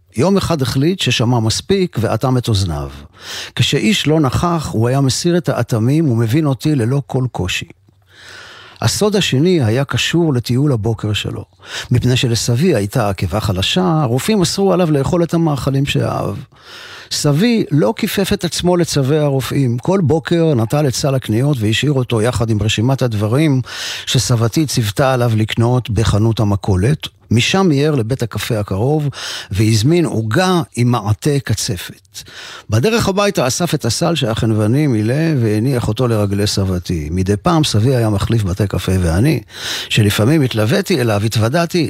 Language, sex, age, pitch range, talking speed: Hebrew, male, 40-59, 105-145 Hz, 140 wpm